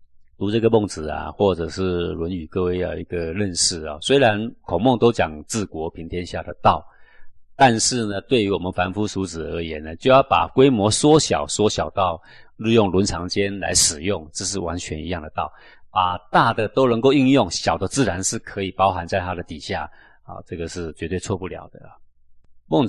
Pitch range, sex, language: 80-110 Hz, male, Chinese